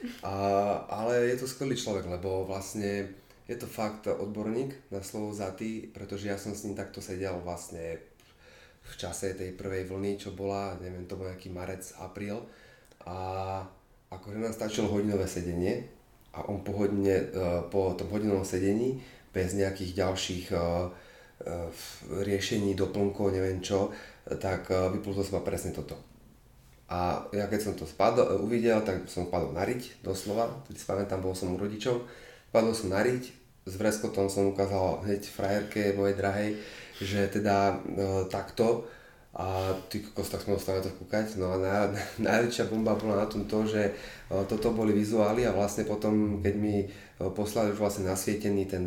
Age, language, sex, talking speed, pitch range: 30-49, Slovak, male, 160 wpm, 95-105 Hz